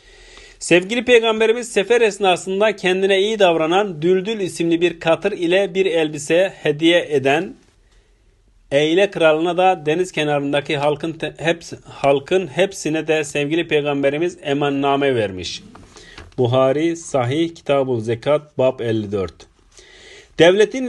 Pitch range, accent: 130-185 Hz, native